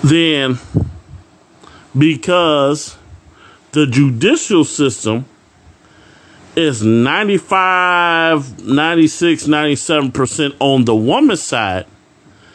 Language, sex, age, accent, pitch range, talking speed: English, male, 40-59, American, 110-170 Hz, 60 wpm